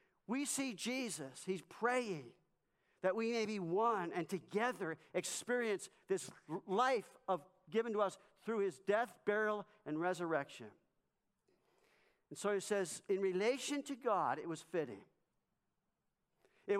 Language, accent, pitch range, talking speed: English, American, 165-210 Hz, 130 wpm